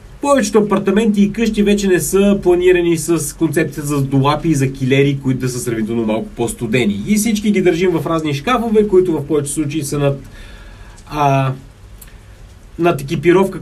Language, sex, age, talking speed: Bulgarian, male, 30-49, 160 wpm